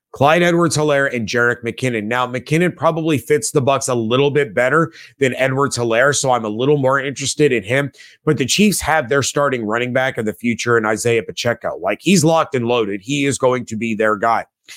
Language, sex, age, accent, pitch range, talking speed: English, male, 30-49, American, 125-155 Hz, 205 wpm